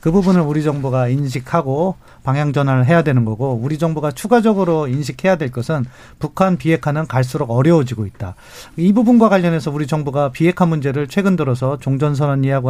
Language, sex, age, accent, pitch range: Korean, male, 40-59, native, 135-180 Hz